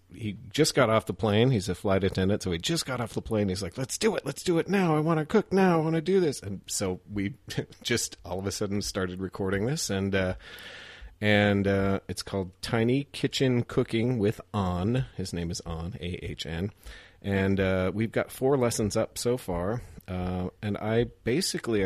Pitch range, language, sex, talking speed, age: 95-120 Hz, English, male, 210 wpm, 40-59